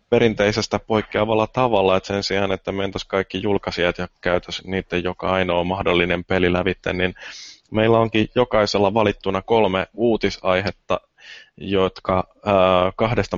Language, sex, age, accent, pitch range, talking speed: Finnish, male, 20-39, native, 90-110 Hz, 120 wpm